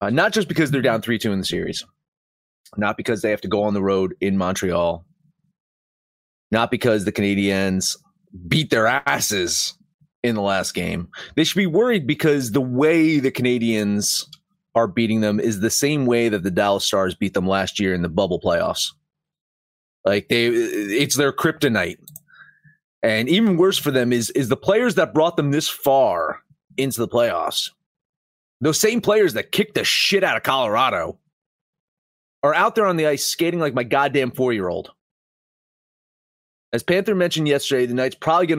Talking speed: 175 wpm